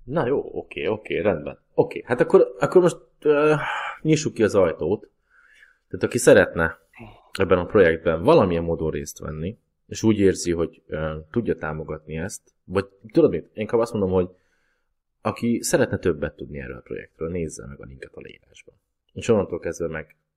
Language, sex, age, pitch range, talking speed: Hungarian, male, 20-39, 80-110 Hz, 170 wpm